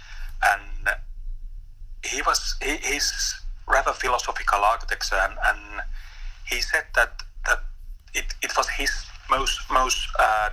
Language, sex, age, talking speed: Dutch, male, 30-49, 120 wpm